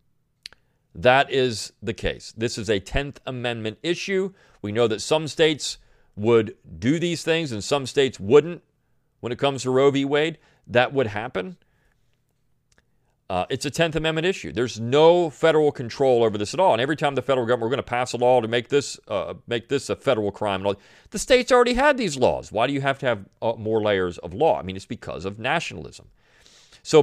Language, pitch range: English, 105-150 Hz